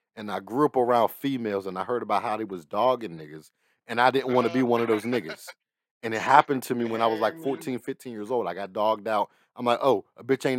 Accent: American